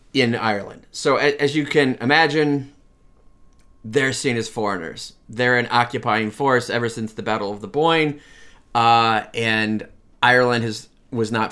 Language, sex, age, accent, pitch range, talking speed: English, male, 30-49, American, 105-125 Hz, 145 wpm